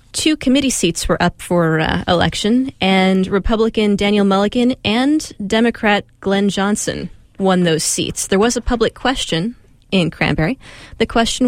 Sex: female